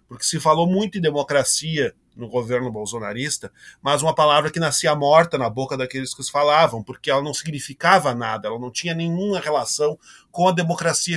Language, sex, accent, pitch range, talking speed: Portuguese, male, Brazilian, 130-175 Hz, 185 wpm